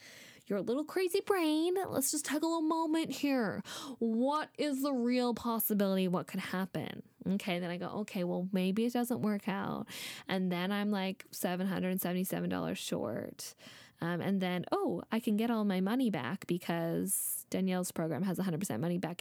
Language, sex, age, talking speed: English, female, 10-29, 175 wpm